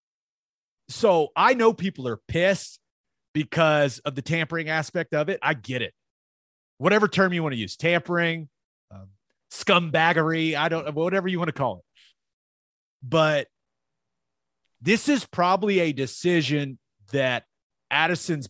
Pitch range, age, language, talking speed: 125-170 Hz, 30-49, English, 130 wpm